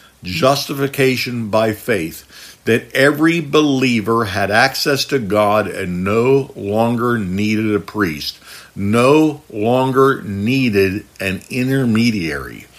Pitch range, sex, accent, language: 105-135 Hz, male, American, English